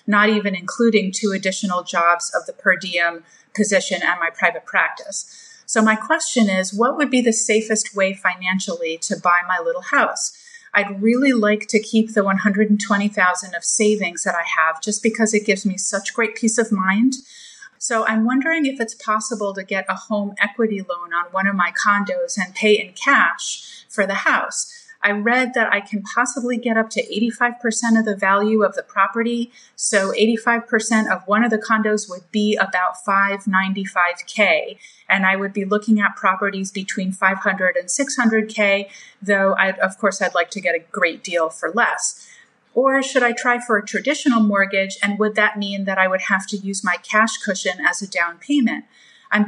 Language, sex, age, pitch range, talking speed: English, female, 30-49, 190-230 Hz, 185 wpm